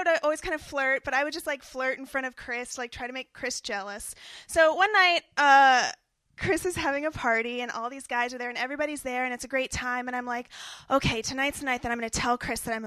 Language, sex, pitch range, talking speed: English, female, 240-315 Hz, 275 wpm